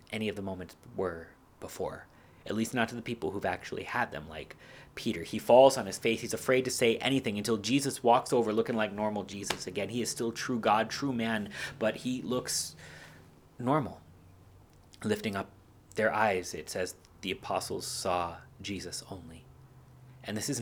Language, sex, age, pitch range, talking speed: English, male, 30-49, 100-120 Hz, 180 wpm